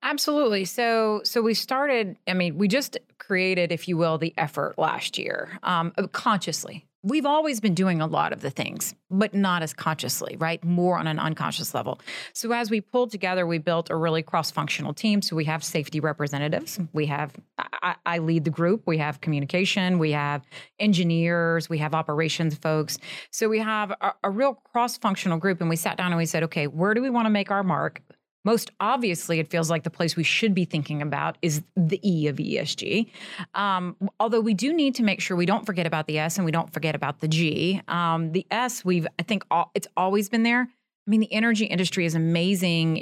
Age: 30-49